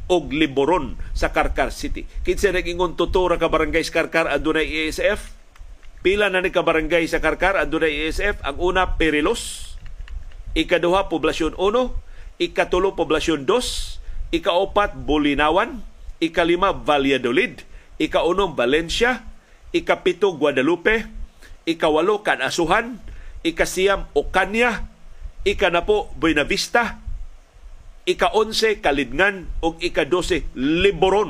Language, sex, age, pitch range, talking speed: Filipino, male, 40-59, 140-205 Hz, 100 wpm